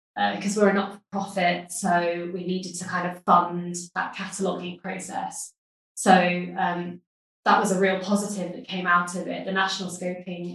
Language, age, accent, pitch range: English, 20-39, British, 180-210 Hz